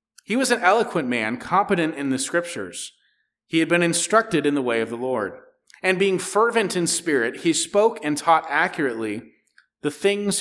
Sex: male